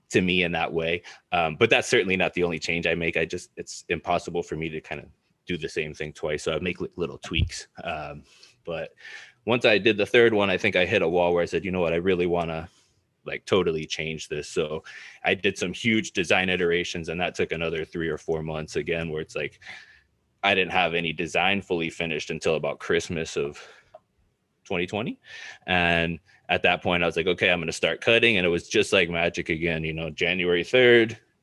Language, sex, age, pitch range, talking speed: English, male, 20-39, 80-95 Hz, 220 wpm